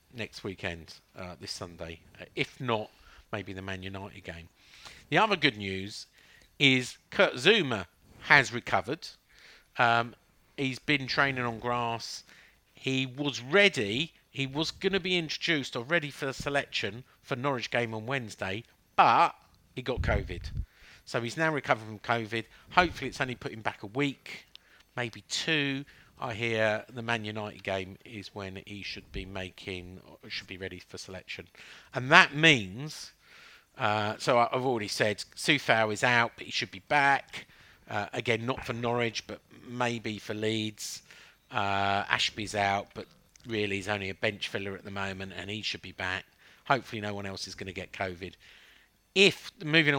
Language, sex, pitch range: English, male, 100-135 Hz